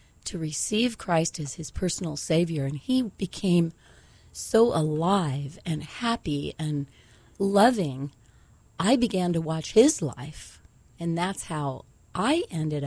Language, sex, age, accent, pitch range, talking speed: English, female, 40-59, American, 155-195 Hz, 125 wpm